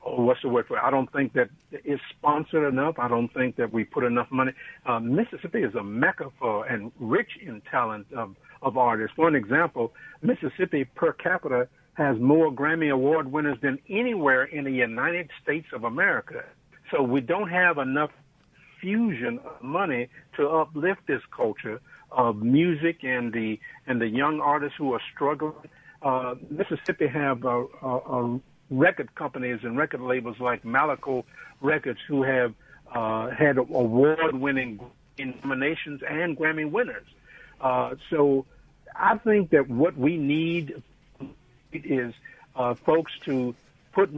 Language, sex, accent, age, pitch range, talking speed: English, male, American, 60-79, 125-155 Hz, 150 wpm